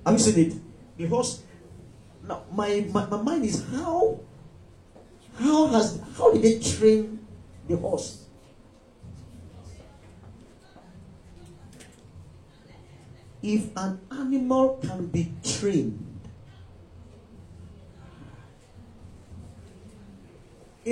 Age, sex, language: 50-69, male, English